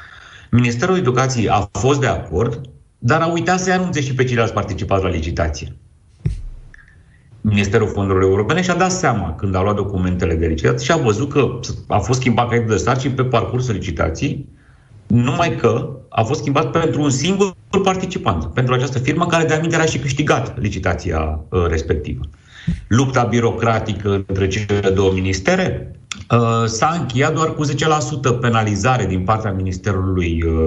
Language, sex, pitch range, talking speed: Romanian, male, 95-130 Hz, 150 wpm